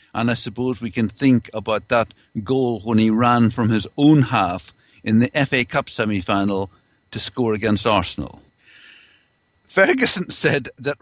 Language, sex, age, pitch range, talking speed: English, male, 60-79, 100-140 Hz, 150 wpm